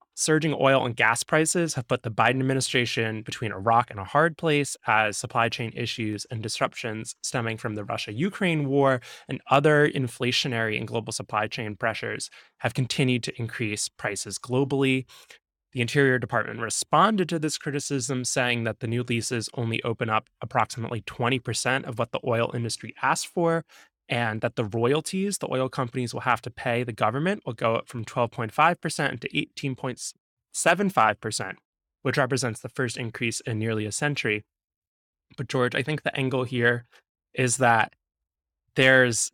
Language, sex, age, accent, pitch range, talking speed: English, male, 20-39, American, 115-140 Hz, 160 wpm